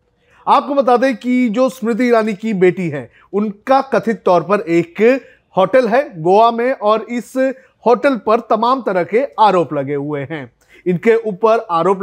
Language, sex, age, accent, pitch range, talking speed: Hindi, male, 30-49, native, 180-230 Hz, 165 wpm